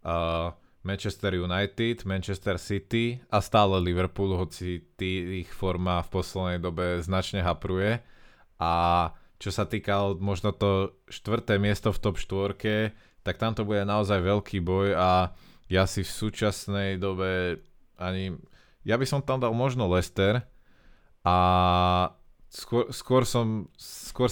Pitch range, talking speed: 90-105 Hz, 130 wpm